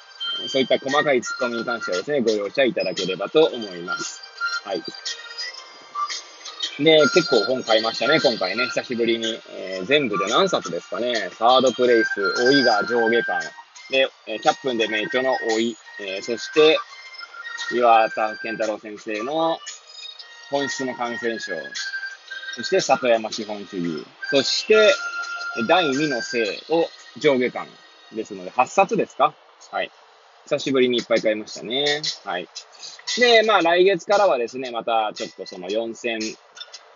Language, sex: Japanese, male